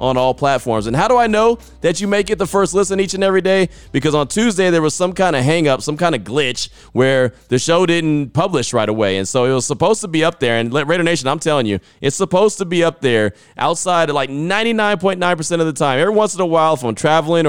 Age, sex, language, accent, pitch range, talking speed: 30-49, male, English, American, 125-170 Hz, 255 wpm